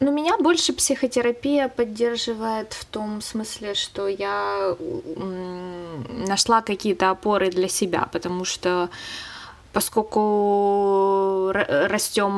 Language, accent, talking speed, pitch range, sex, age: Russian, native, 90 wpm, 180-230 Hz, female, 20-39